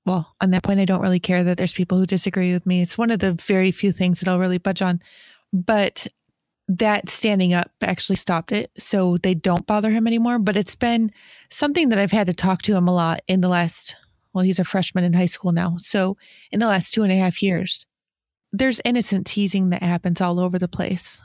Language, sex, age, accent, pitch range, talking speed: English, female, 30-49, American, 185-210 Hz, 230 wpm